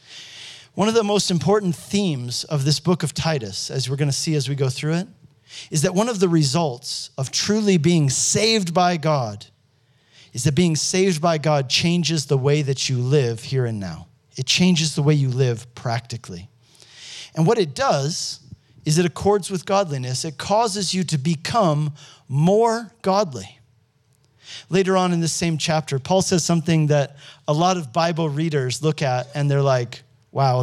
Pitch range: 130-175 Hz